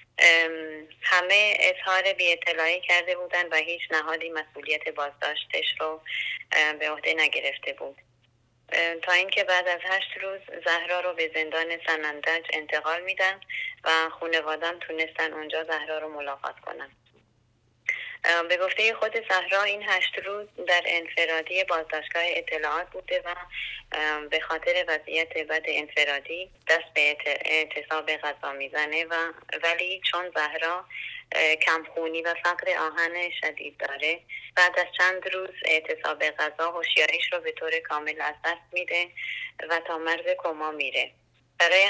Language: English